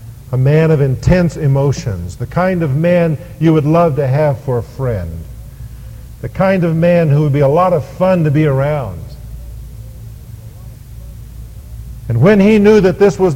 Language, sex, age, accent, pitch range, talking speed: English, male, 50-69, American, 115-150 Hz, 170 wpm